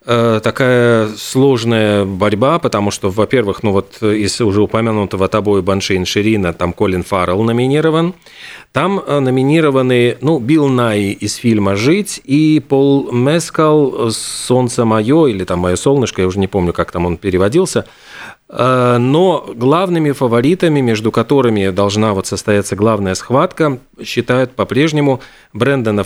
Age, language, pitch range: 40-59, Russian, 110-140 Hz